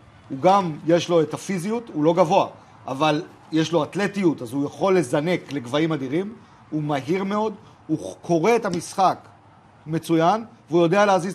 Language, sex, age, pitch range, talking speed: Hebrew, male, 40-59, 155-220 Hz, 160 wpm